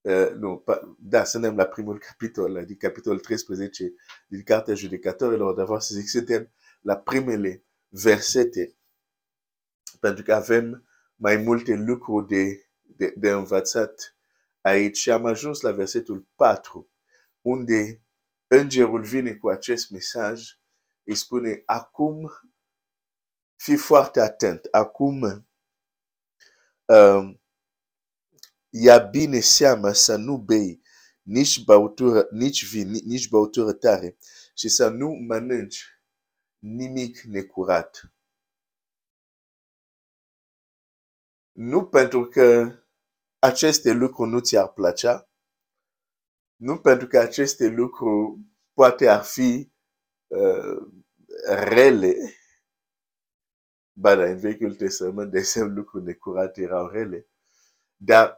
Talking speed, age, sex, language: 80 wpm, 50-69, male, Romanian